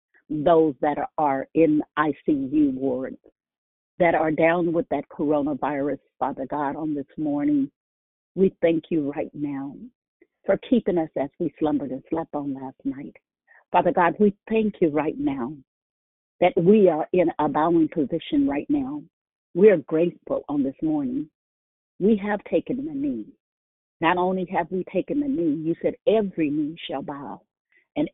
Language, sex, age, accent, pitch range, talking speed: English, female, 50-69, American, 155-245 Hz, 160 wpm